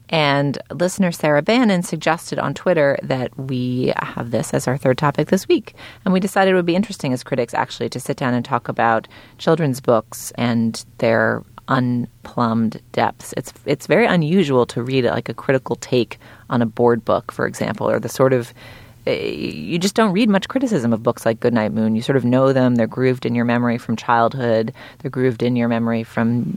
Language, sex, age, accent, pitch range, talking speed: English, female, 30-49, American, 115-150 Hz, 200 wpm